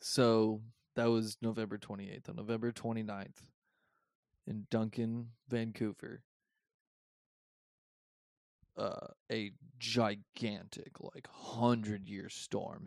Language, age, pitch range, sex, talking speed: English, 20-39, 105-120 Hz, male, 80 wpm